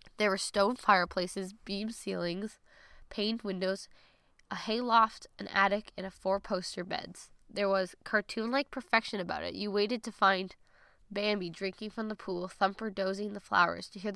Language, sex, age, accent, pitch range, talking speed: English, female, 10-29, American, 185-225 Hz, 170 wpm